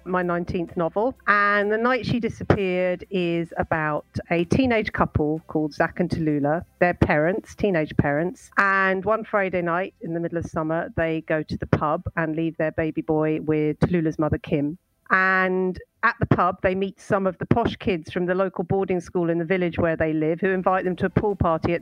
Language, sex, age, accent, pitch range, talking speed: English, female, 40-59, British, 155-190 Hz, 205 wpm